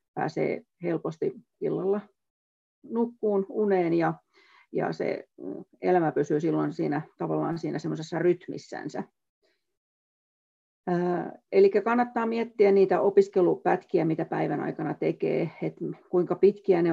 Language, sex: Finnish, female